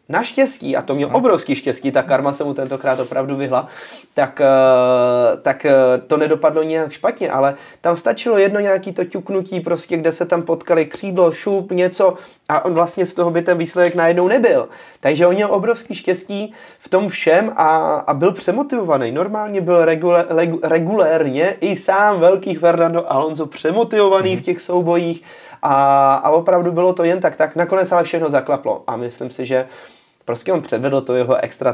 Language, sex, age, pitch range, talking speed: Czech, male, 20-39, 130-180 Hz, 170 wpm